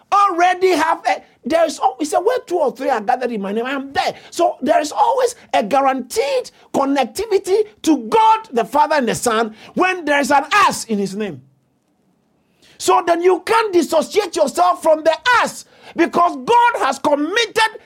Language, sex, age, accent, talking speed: English, male, 50-69, Nigerian, 180 wpm